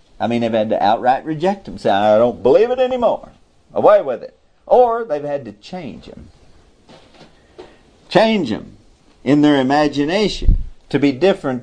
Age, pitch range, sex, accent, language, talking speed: 50-69, 110-155 Hz, male, American, English, 160 wpm